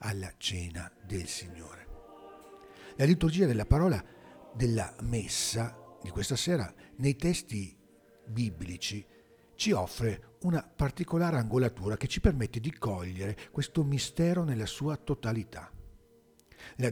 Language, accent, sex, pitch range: Italian, native, male, 100-145 Hz